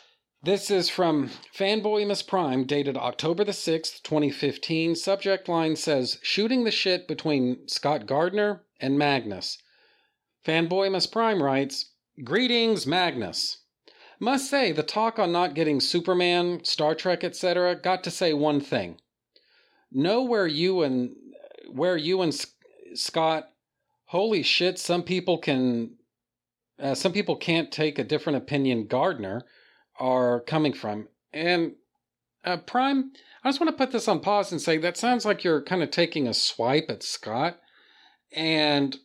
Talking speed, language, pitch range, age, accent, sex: 145 wpm, English, 135-185 Hz, 40-59, American, male